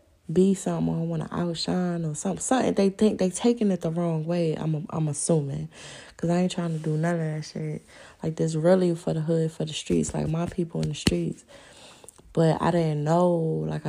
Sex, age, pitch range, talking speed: female, 20-39, 145-170 Hz, 215 wpm